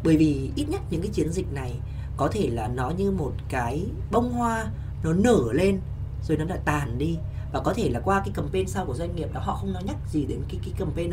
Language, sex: Vietnamese, female